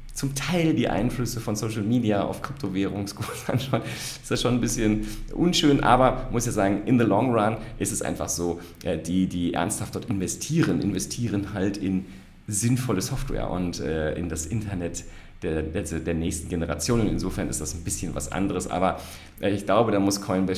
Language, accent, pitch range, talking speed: German, German, 85-130 Hz, 175 wpm